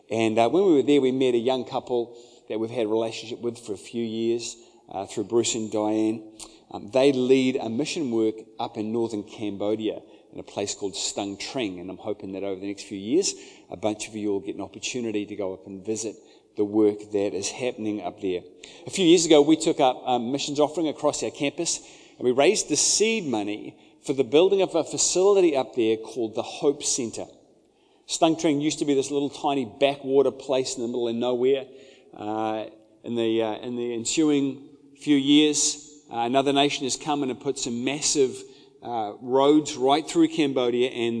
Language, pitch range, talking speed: English, 115-145 Hz, 205 wpm